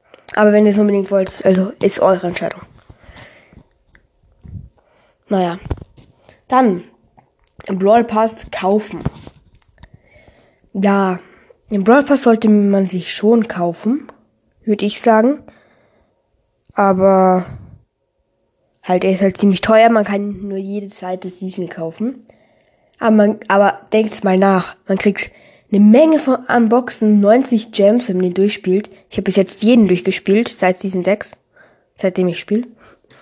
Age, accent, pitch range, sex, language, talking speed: 10-29, German, 190-230 Hz, female, German, 130 wpm